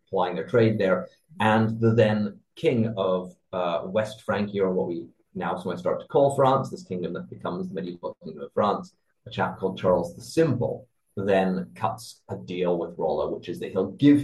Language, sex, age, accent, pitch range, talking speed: English, male, 30-49, British, 95-115 Hz, 195 wpm